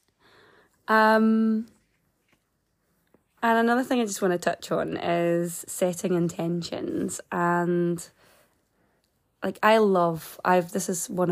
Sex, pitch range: female, 160-185 Hz